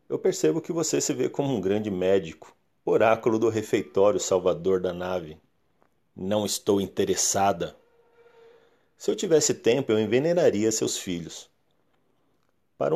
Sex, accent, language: male, Brazilian, Portuguese